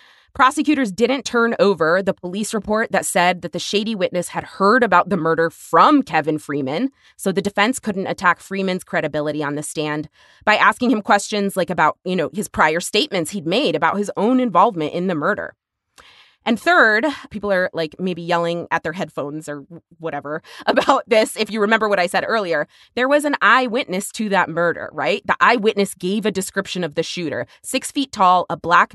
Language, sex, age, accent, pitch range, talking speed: English, female, 20-39, American, 170-220 Hz, 195 wpm